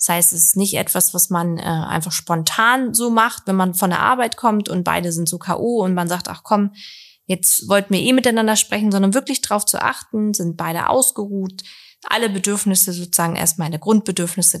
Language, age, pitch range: German, 20-39, 175-210 Hz